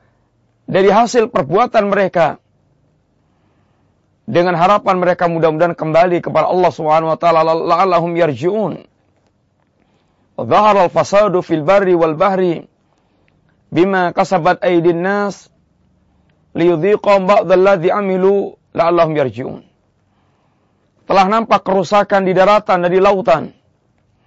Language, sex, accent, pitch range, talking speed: Indonesian, male, native, 140-205 Hz, 105 wpm